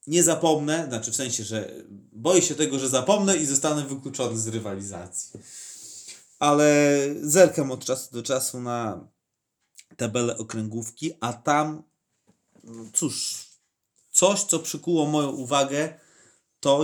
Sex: male